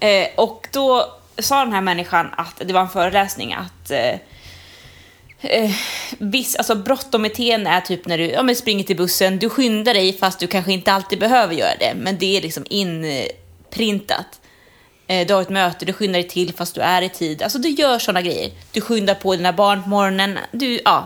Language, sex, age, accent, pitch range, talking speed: Swedish, female, 20-39, native, 180-245 Hz, 195 wpm